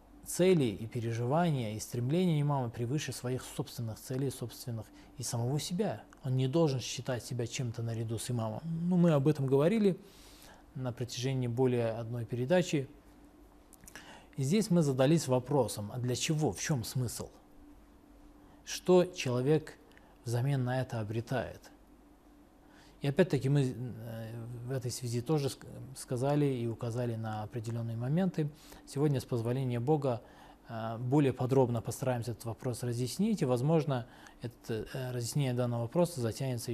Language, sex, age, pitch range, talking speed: Russian, male, 20-39, 115-150 Hz, 130 wpm